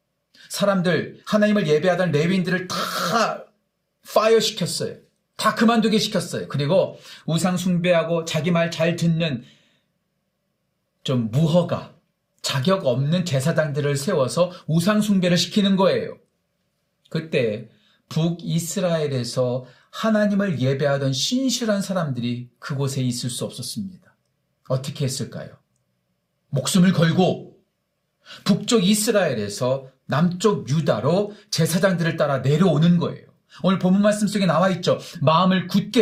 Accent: native